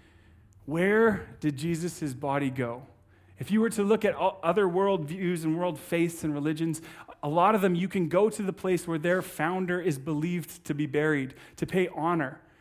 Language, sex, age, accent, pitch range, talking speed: English, male, 30-49, American, 150-185 Hz, 190 wpm